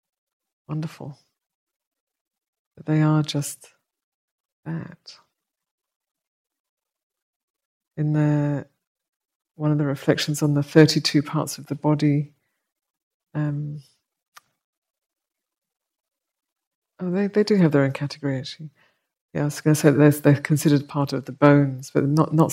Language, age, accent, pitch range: English, 50-69, British, 140-155 Hz